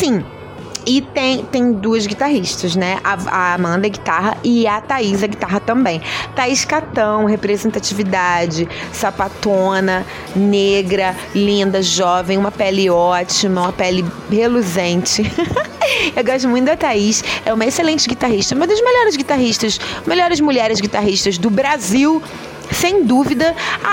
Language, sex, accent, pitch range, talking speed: Portuguese, female, Brazilian, 200-270 Hz, 130 wpm